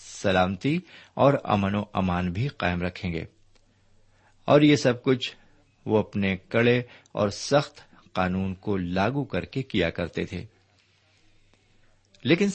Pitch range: 95-120 Hz